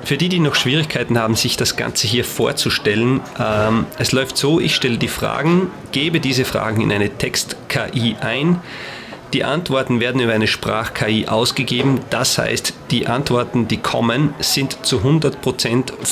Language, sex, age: German, male, 40-59